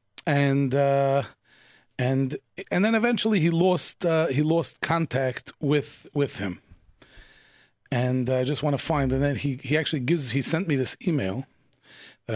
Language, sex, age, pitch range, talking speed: English, male, 40-59, 125-155 Hz, 160 wpm